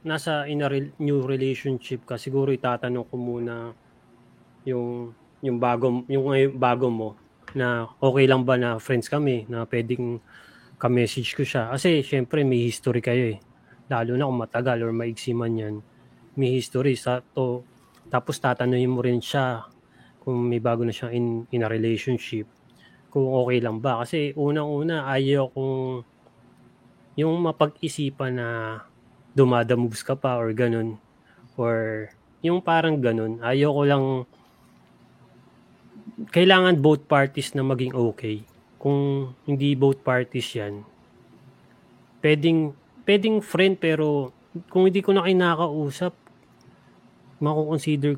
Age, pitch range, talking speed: 20-39, 120-145 Hz, 130 wpm